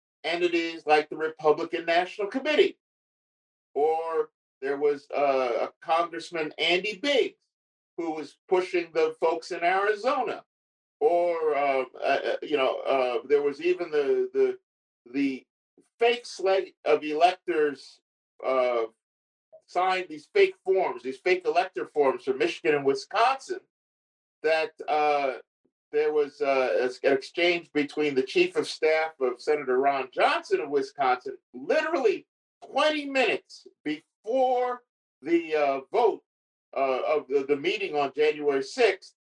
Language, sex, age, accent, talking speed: English, male, 50-69, American, 130 wpm